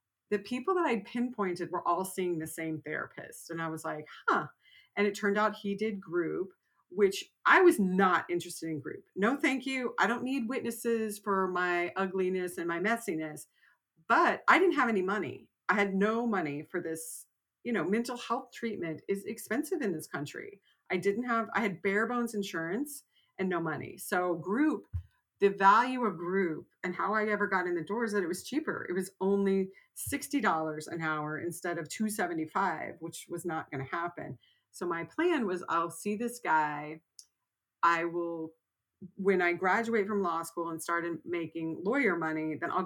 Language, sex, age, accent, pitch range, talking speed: English, female, 40-59, American, 165-220 Hz, 185 wpm